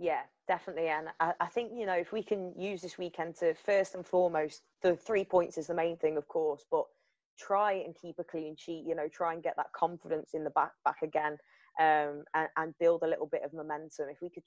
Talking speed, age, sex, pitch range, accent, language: 240 wpm, 20-39, female, 150-170 Hz, British, English